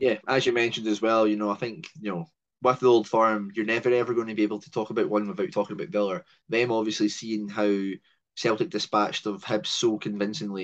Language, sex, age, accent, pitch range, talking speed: English, male, 20-39, British, 100-115 Hz, 230 wpm